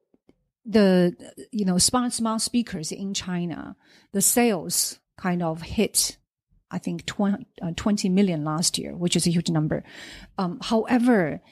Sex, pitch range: female, 170-205 Hz